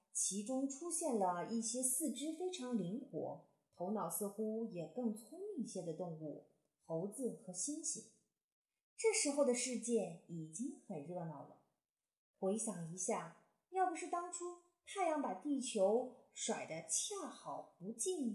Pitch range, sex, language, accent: 200-305 Hz, female, Chinese, native